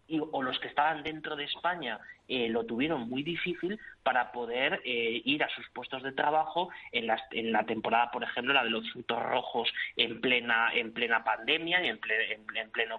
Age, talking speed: 20-39, 200 wpm